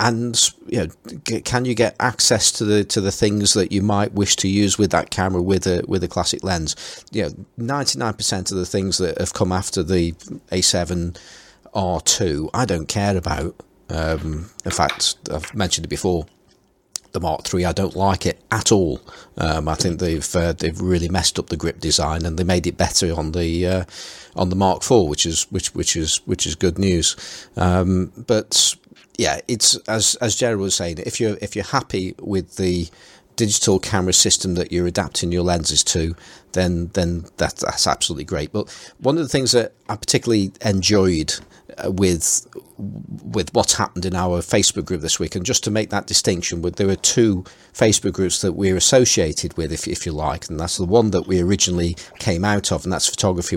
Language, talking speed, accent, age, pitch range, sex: English, 195 wpm, British, 40-59, 85-100 Hz, male